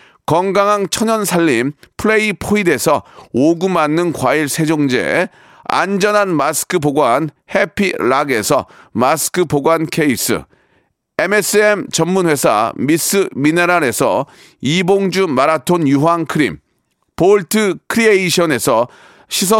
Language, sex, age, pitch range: Korean, male, 40-59, 155-205 Hz